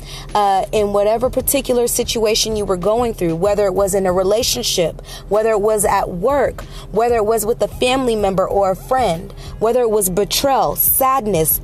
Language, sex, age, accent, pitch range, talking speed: English, female, 20-39, American, 205-245 Hz, 180 wpm